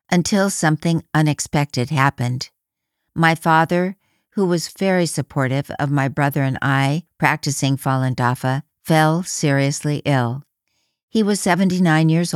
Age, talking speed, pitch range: 60-79, 120 wpm, 140-175 Hz